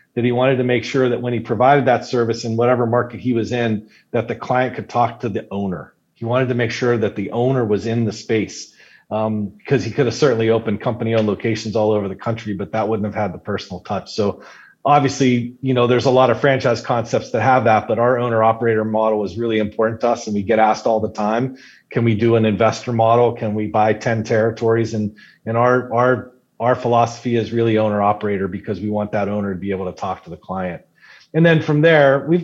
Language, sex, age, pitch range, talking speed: English, male, 40-59, 110-125 Hz, 235 wpm